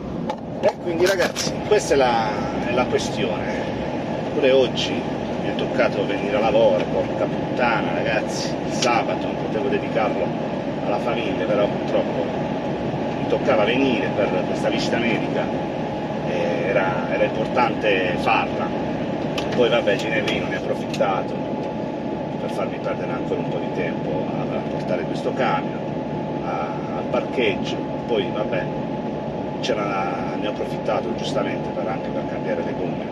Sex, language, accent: male, Italian, native